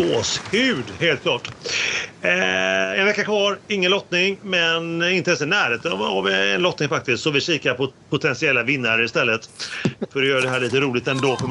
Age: 40-59